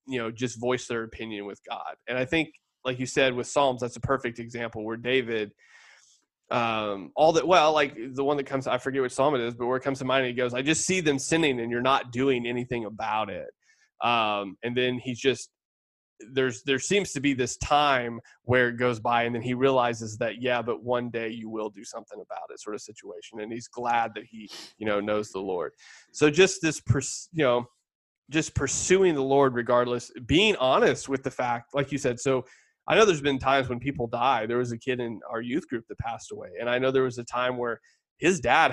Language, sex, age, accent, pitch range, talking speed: English, male, 20-39, American, 115-140 Hz, 230 wpm